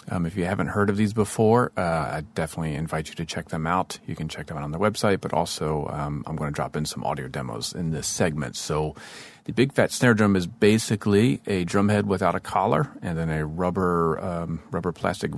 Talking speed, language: 235 wpm, English